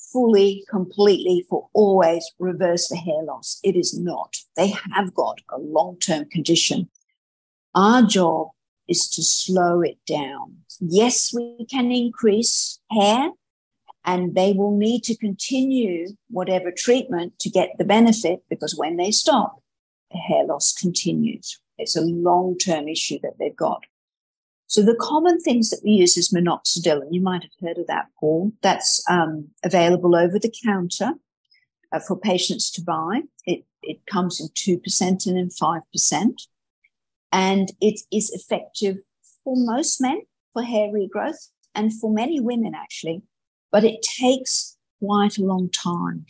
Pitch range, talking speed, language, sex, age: 175-225 Hz, 145 wpm, English, female, 50-69